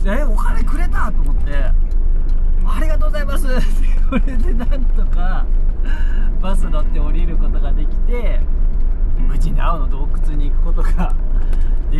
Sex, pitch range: male, 70-80 Hz